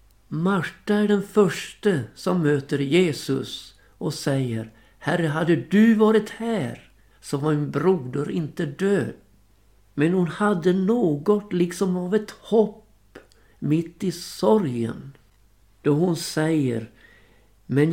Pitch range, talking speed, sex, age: 135-200 Hz, 115 wpm, male, 60-79